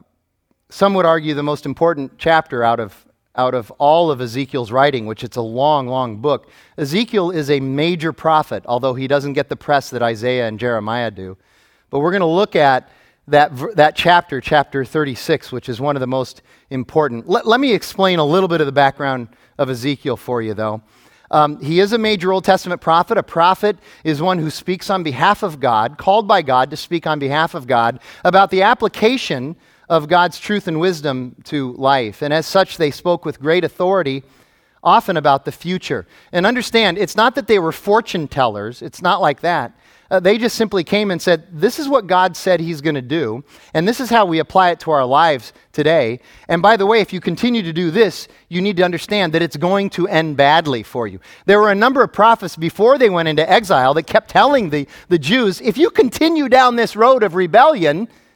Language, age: English, 40-59